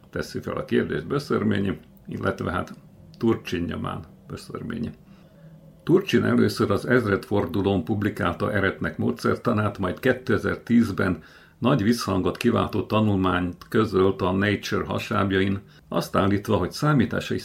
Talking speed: 105 wpm